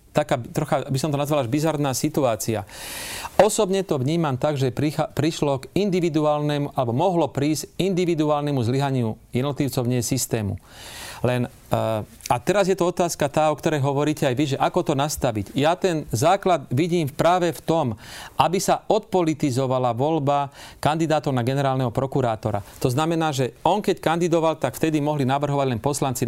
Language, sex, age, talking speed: Slovak, male, 40-59, 160 wpm